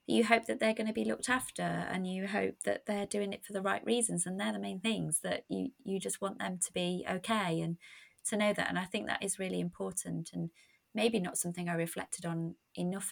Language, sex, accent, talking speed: English, female, British, 245 wpm